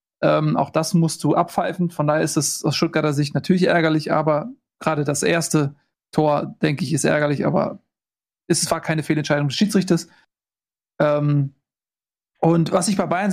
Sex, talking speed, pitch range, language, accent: male, 165 wpm, 155-180 Hz, German, German